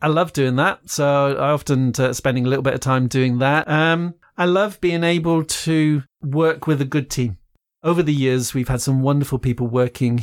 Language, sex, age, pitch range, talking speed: English, male, 40-59, 125-145 Hz, 210 wpm